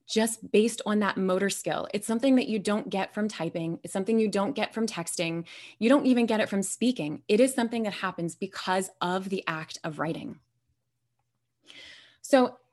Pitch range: 170-230 Hz